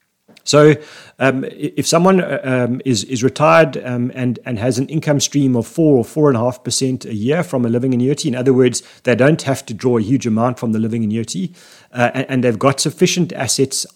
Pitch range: 115-135 Hz